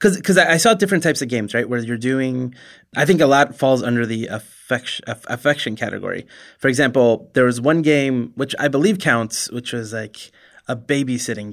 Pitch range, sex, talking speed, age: 110-135 Hz, male, 200 wpm, 20-39